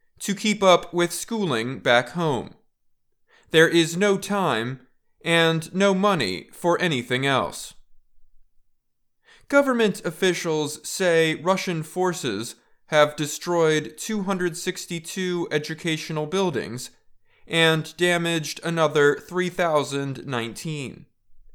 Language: English